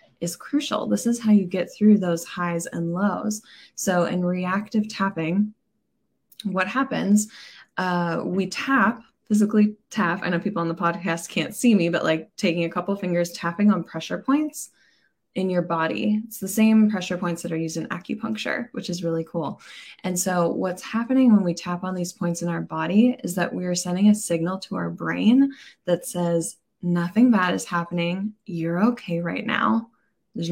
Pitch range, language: 170-215 Hz, English